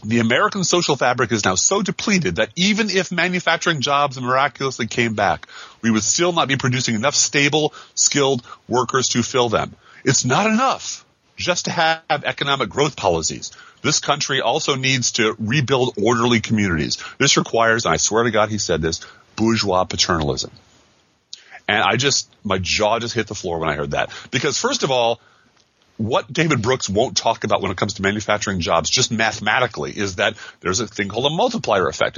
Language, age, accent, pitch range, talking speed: English, 30-49, American, 100-140 Hz, 185 wpm